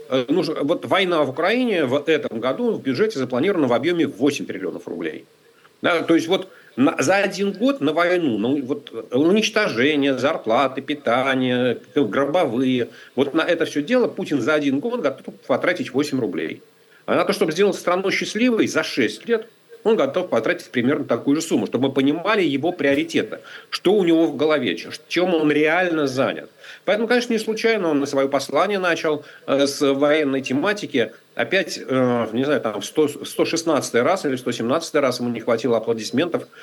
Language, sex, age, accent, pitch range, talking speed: Russian, male, 50-69, native, 135-200 Hz, 165 wpm